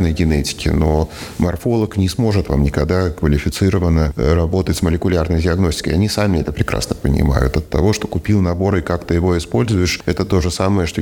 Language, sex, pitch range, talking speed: Russian, male, 75-95 Hz, 175 wpm